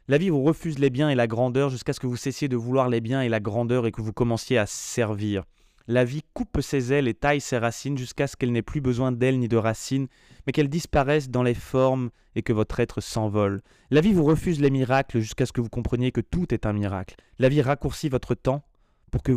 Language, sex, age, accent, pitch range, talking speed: French, male, 20-39, French, 105-130 Hz, 250 wpm